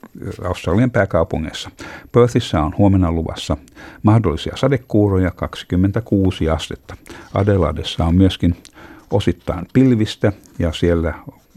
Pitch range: 85-100 Hz